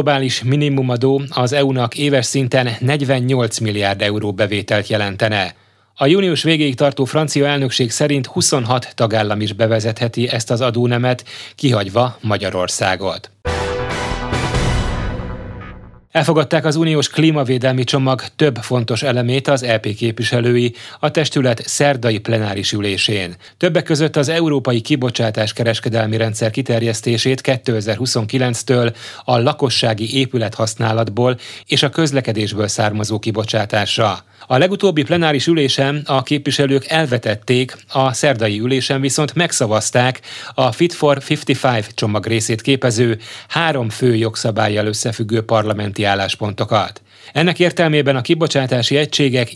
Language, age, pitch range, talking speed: Hungarian, 30-49, 110-140 Hz, 110 wpm